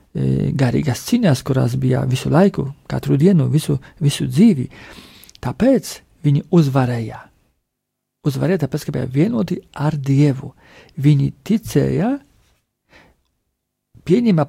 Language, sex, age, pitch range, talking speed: English, male, 50-69, 130-175 Hz, 95 wpm